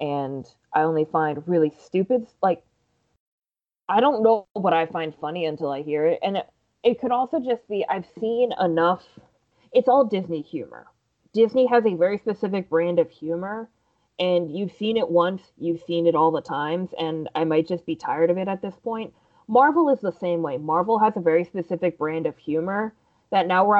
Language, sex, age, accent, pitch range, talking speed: English, female, 20-39, American, 155-195 Hz, 195 wpm